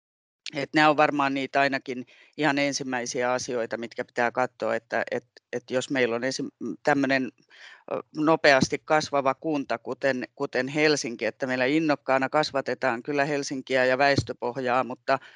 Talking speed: 135 wpm